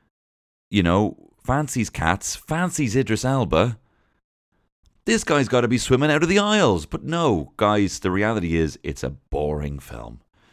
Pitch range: 90-135 Hz